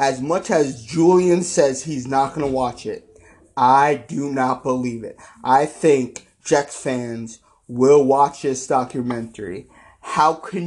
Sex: male